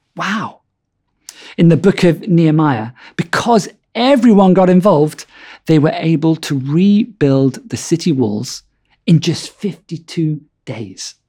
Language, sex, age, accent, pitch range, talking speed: English, male, 50-69, British, 130-170 Hz, 115 wpm